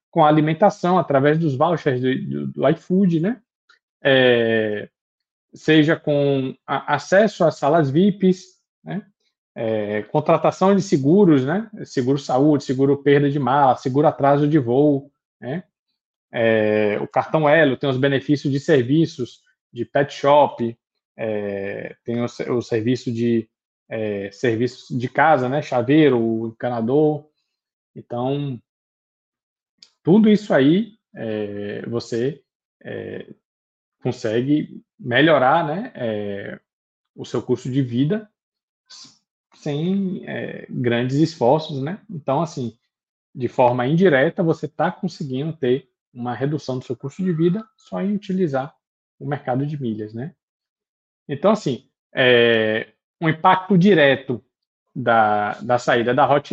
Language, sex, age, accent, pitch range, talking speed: Portuguese, male, 20-39, Brazilian, 120-160 Hz, 110 wpm